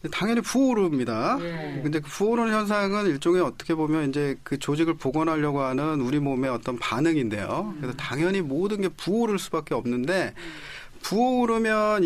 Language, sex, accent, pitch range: Korean, male, native, 135-200 Hz